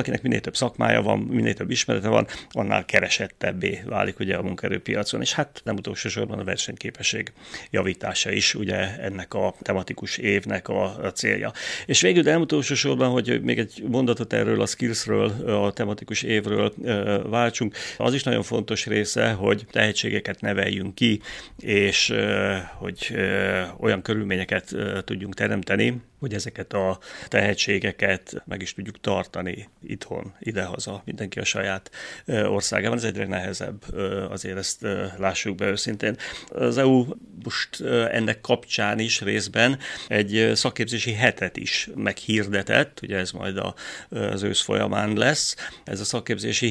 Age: 30-49